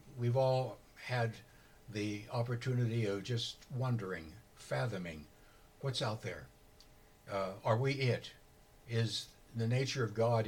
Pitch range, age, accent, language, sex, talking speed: 100-125 Hz, 60-79, American, English, male, 120 wpm